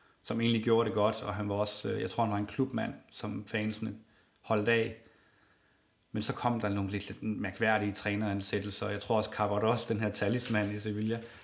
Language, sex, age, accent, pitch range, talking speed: Danish, male, 40-59, native, 100-115 Hz, 200 wpm